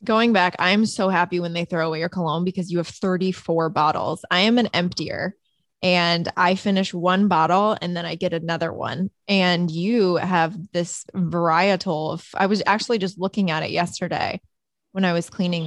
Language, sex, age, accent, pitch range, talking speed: English, female, 20-39, American, 175-205 Hz, 190 wpm